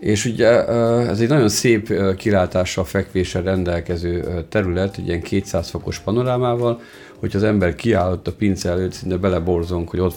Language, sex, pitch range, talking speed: Hungarian, male, 85-100 Hz, 155 wpm